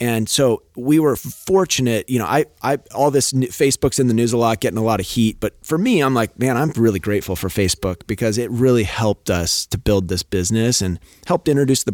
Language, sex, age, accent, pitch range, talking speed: English, male, 30-49, American, 95-125 Hz, 230 wpm